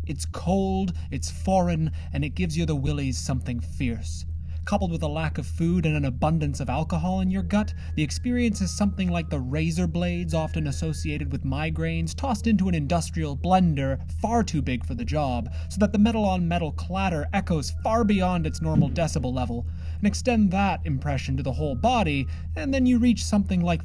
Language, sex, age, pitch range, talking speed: English, male, 30-49, 75-85 Hz, 190 wpm